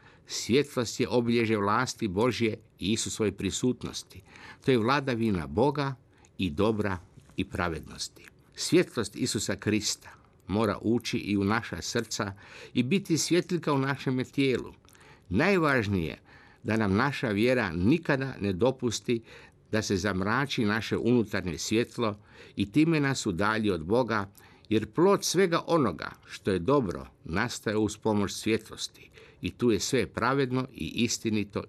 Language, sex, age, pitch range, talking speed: Croatian, male, 60-79, 100-125 Hz, 130 wpm